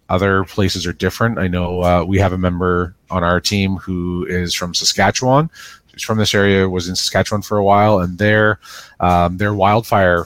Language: English